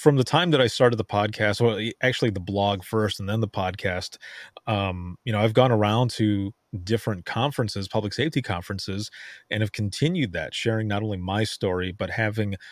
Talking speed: 190 wpm